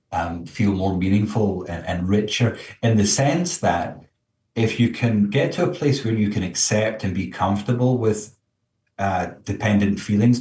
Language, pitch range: English, 95-115 Hz